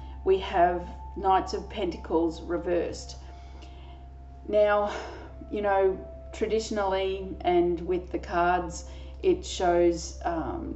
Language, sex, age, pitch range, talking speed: English, female, 30-49, 160-215 Hz, 95 wpm